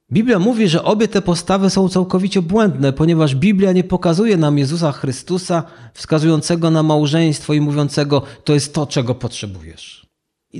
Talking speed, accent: 155 wpm, native